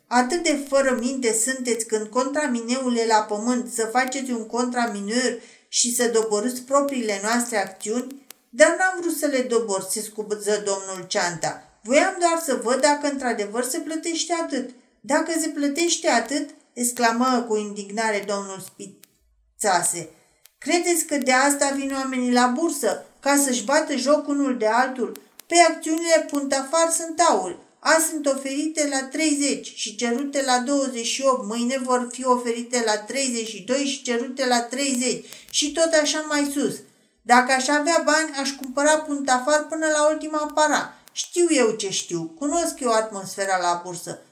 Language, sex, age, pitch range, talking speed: Romanian, female, 40-59, 225-295 Hz, 150 wpm